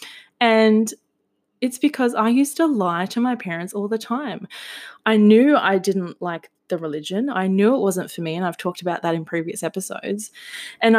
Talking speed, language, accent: 190 wpm, English, Australian